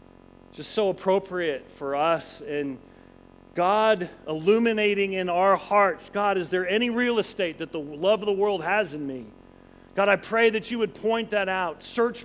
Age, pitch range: 40-59, 145-210 Hz